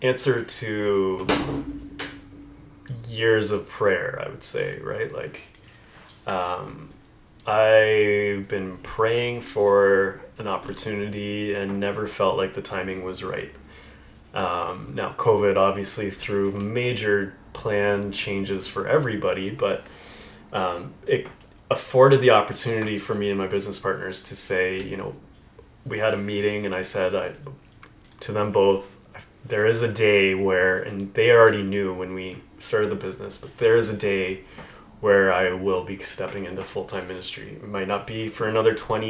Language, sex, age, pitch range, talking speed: English, male, 20-39, 95-110 Hz, 145 wpm